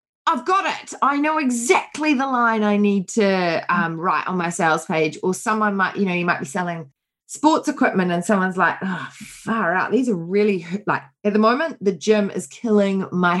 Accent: Australian